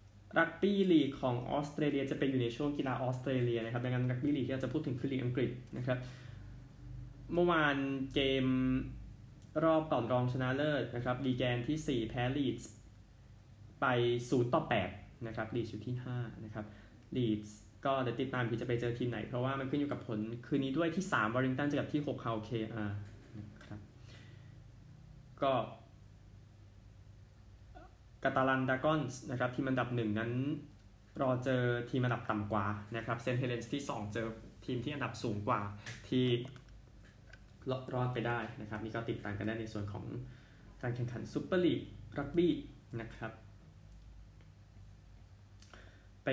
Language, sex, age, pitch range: Thai, male, 20-39, 105-130 Hz